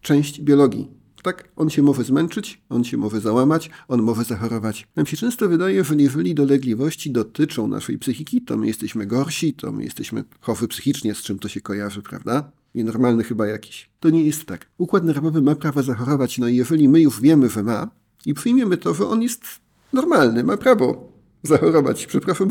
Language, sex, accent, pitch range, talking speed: Polish, male, native, 125-170 Hz, 185 wpm